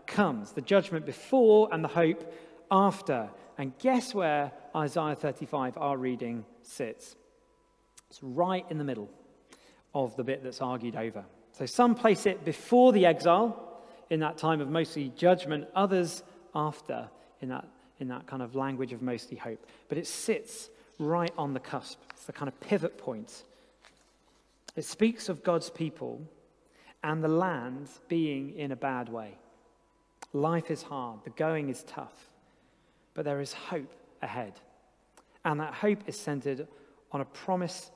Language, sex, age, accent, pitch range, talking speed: English, male, 40-59, British, 140-180 Hz, 155 wpm